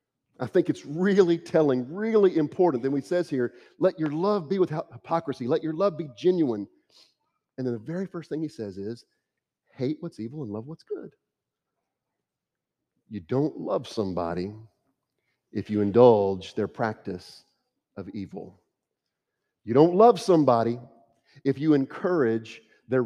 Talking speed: 150 wpm